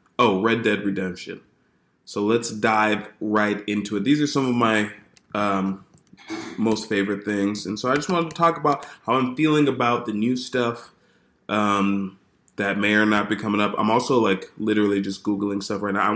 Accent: American